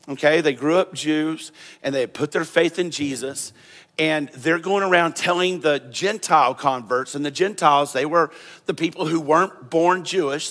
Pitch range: 145-180 Hz